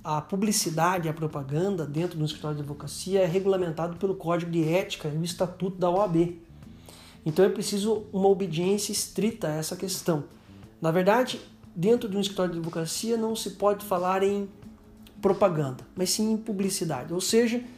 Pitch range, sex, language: 165-210 Hz, male, Portuguese